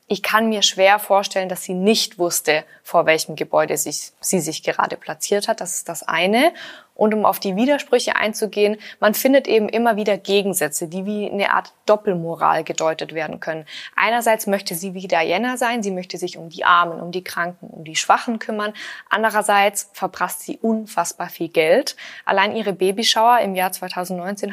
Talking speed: 175 wpm